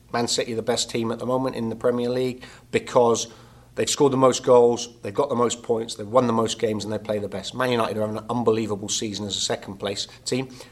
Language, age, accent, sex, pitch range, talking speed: English, 30-49, British, male, 115-125 Hz, 250 wpm